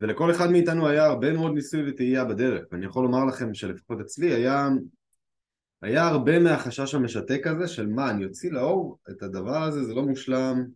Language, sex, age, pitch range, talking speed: Hebrew, male, 20-39, 110-150 Hz, 180 wpm